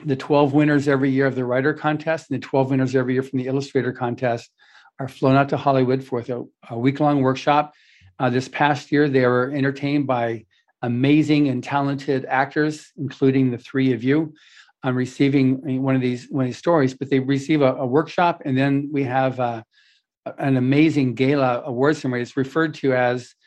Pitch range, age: 125-140 Hz, 50-69